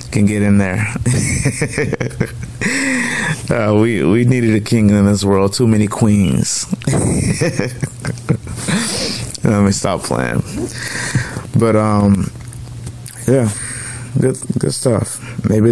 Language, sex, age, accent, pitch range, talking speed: English, male, 20-39, American, 105-130 Hz, 105 wpm